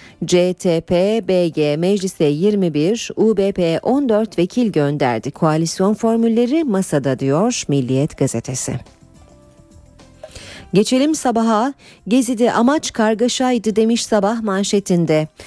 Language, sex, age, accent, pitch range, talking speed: Turkish, female, 40-59, native, 165-225 Hz, 80 wpm